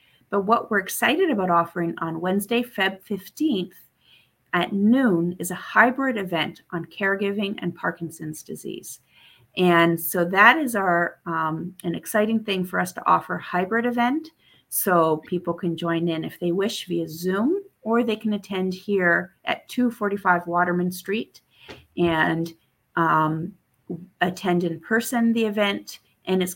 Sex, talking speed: female, 145 wpm